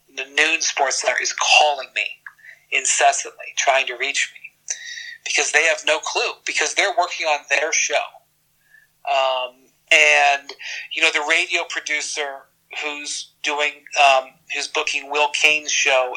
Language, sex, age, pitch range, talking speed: English, male, 40-59, 140-175 Hz, 140 wpm